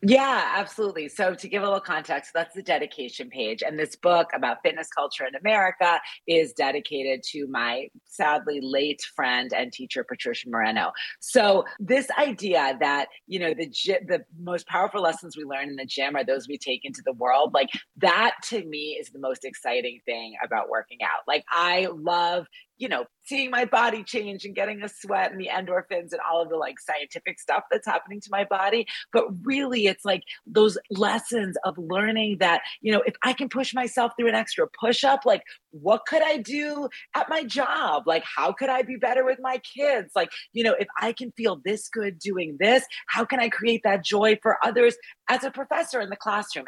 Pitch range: 155-230 Hz